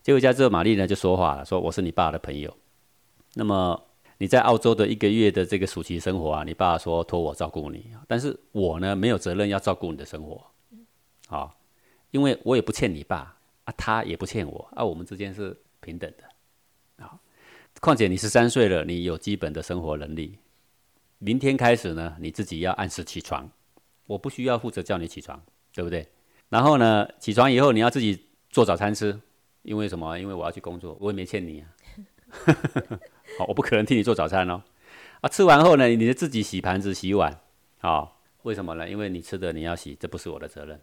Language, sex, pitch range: Chinese, male, 85-105 Hz